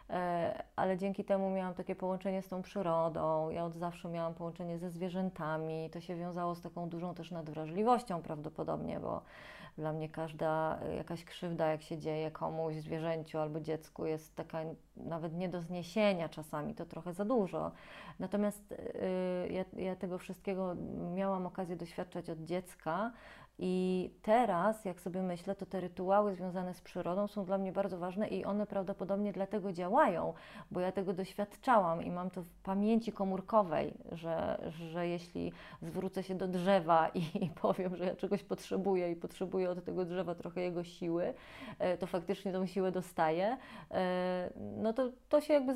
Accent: native